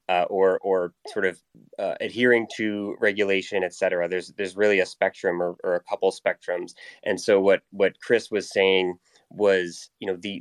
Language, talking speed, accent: English, 180 wpm, American